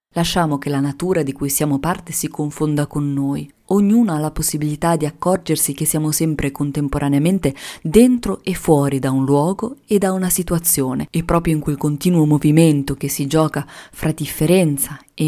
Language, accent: Italian, native